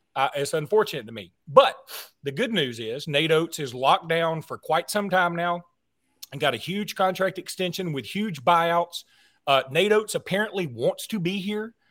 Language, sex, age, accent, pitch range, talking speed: English, male, 40-59, American, 150-195 Hz, 185 wpm